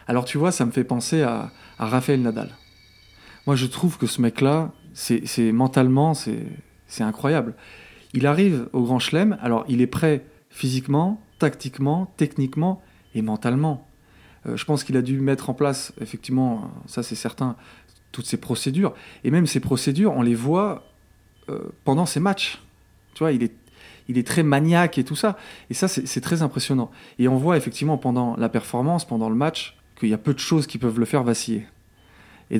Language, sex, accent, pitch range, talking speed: French, male, French, 115-150 Hz, 190 wpm